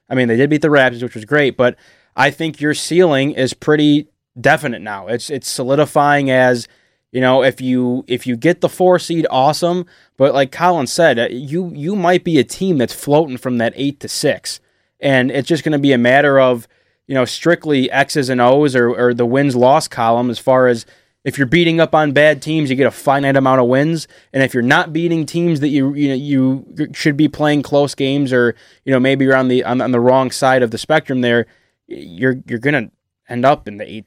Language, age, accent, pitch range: English, 20-39, American, 125-150 Hz